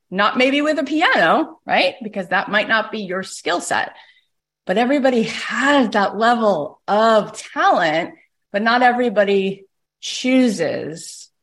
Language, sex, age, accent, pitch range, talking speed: English, female, 30-49, American, 185-230 Hz, 130 wpm